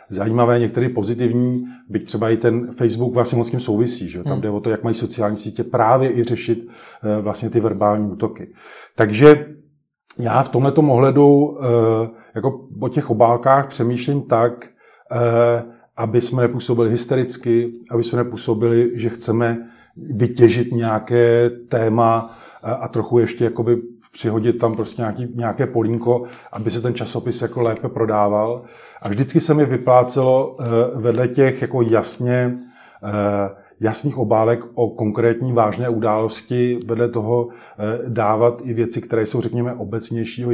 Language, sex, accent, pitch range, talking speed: Czech, male, native, 115-120 Hz, 135 wpm